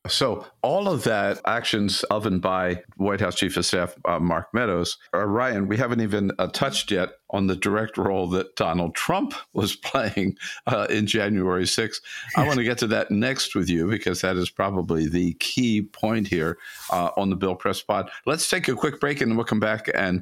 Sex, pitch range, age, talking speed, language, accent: male, 90-120 Hz, 50-69, 210 wpm, English, American